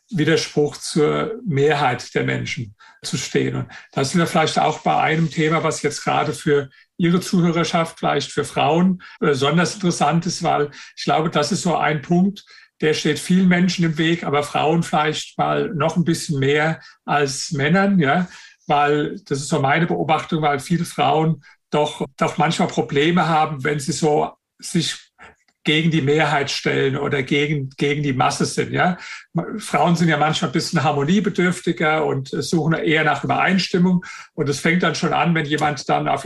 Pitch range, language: 150-175 Hz, German